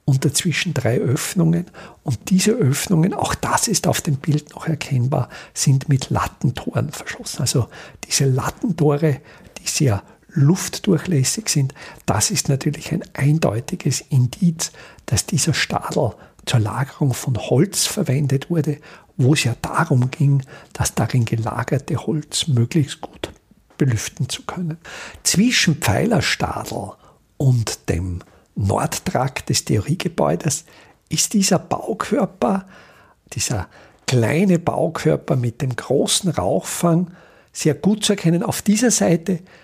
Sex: male